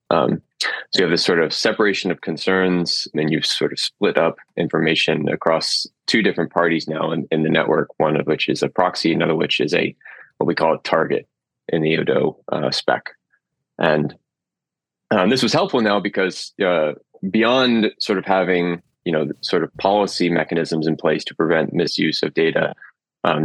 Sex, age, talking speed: male, 20-39, 185 wpm